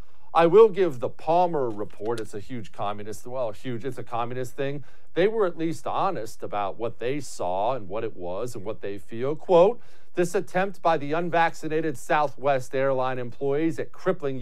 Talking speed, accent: 185 wpm, American